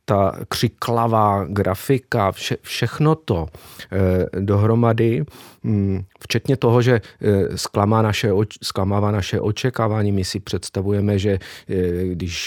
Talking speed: 95 wpm